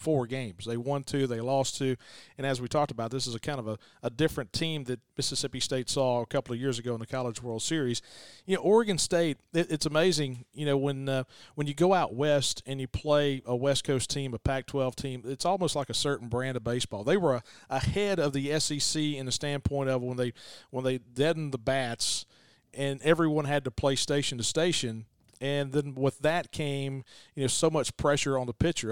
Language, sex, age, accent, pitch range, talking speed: English, male, 40-59, American, 125-150 Hz, 225 wpm